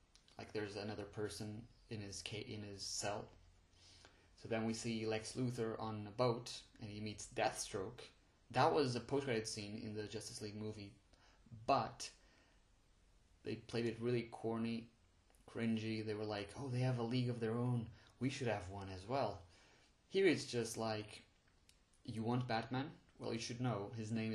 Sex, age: male, 30-49